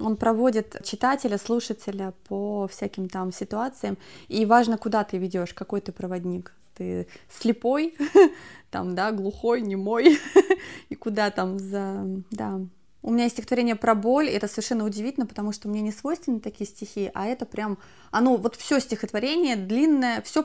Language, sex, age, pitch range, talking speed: Russian, female, 20-39, 210-255 Hz, 155 wpm